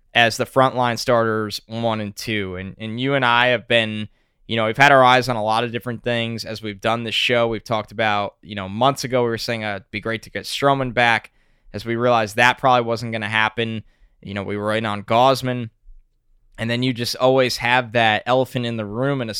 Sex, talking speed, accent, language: male, 240 wpm, American, English